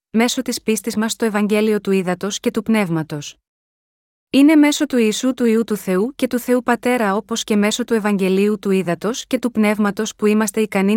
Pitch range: 205-245 Hz